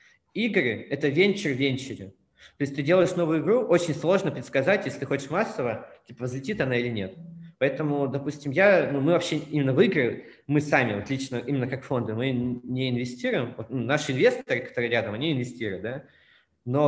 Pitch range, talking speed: 120-155 Hz, 185 wpm